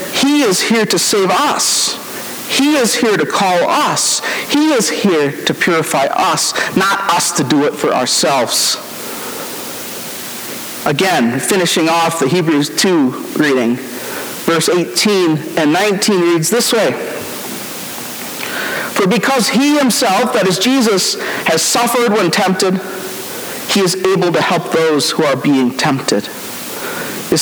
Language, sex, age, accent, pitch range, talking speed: English, male, 50-69, American, 145-195 Hz, 135 wpm